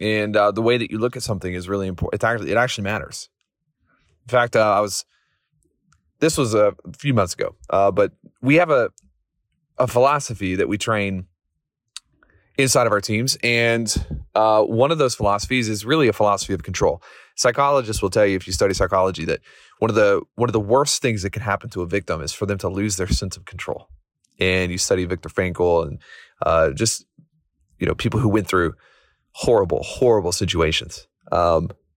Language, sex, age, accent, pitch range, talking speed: English, male, 30-49, American, 95-125 Hz, 195 wpm